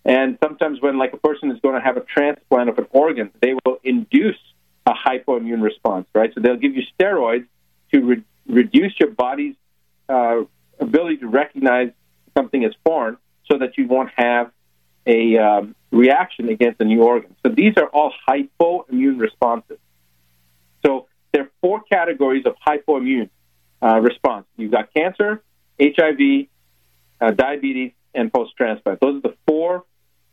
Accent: American